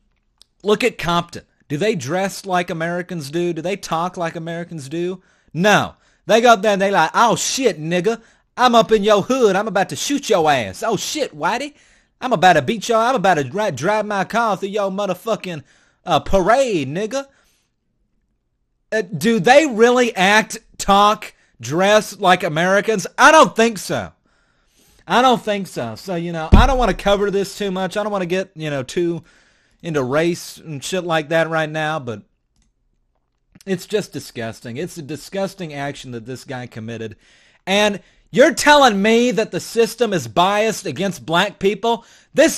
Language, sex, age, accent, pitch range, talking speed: English, male, 30-49, American, 175-245 Hz, 180 wpm